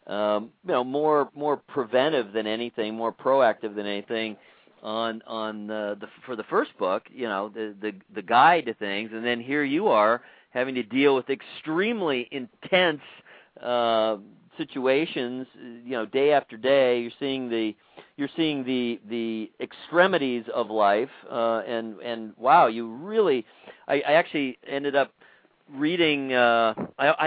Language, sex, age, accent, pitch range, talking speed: English, male, 40-59, American, 115-150 Hz, 150 wpm